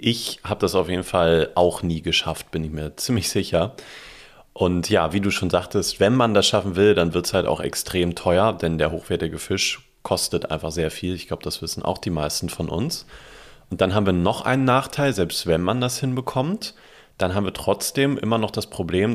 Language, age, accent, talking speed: German, 30-49, German, 215 wpm